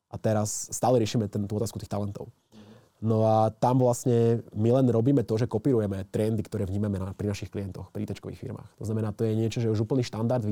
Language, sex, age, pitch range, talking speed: Slovak, male, 20-39, 105-120 Hz, 230 wpm